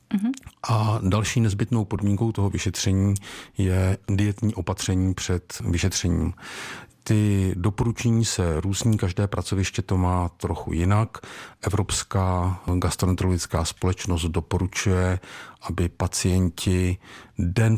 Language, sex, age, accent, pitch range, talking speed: Czech, male, 50-69, native, 85-100 Hz, 95 wpm